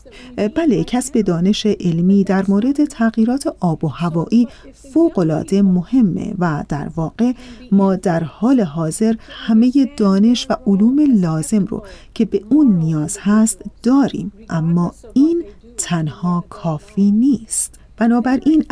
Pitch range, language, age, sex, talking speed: 185-240 Hz, Persian, 40-59, female, 120 wpm